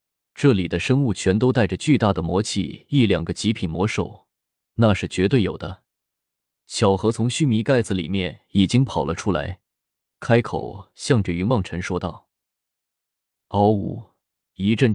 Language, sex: Chinese, male